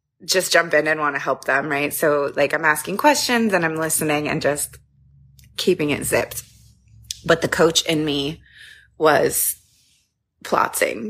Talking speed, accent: 155 wpm, American